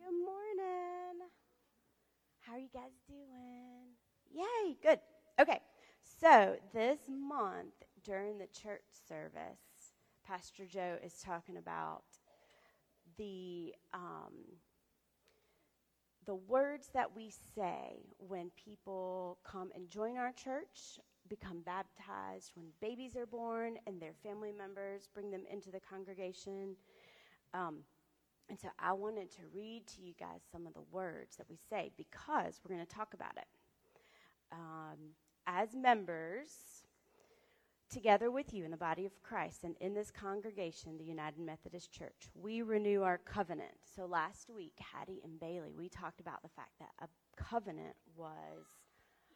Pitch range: 175-245 Hz